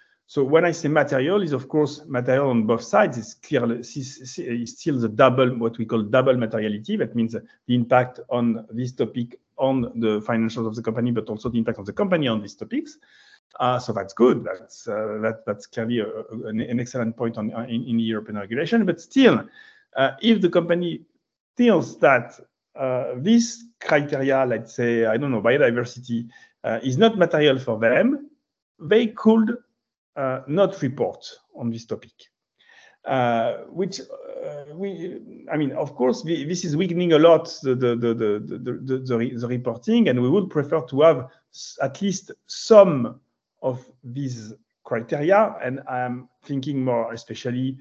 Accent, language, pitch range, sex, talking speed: French, English, 115-165 Hz, male, 175 wpm